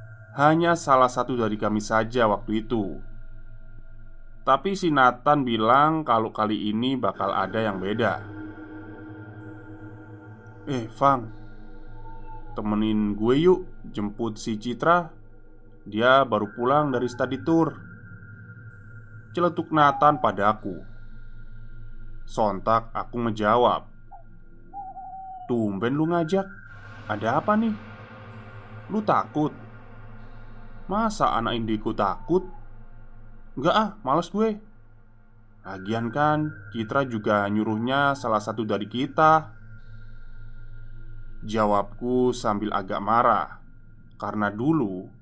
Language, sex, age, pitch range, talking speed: Indonesian, male, 20-39, 110-130 Hz, 95 wpm